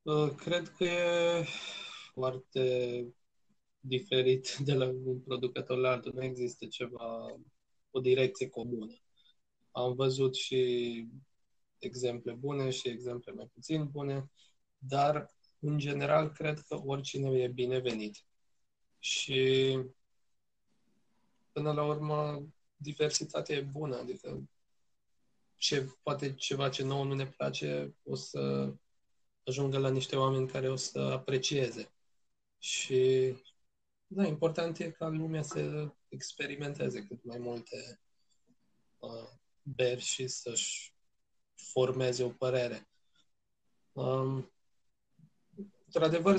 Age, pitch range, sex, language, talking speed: 20-39, 120-145 Hz, male, Romanian, 105 wpm